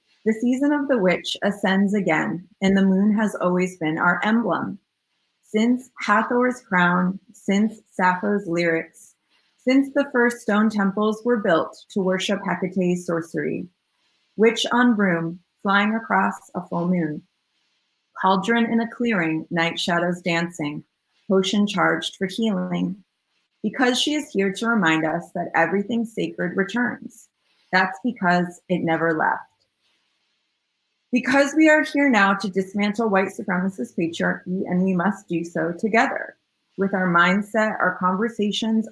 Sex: female